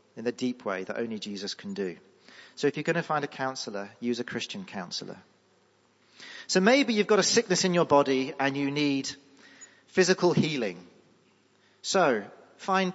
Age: 40-59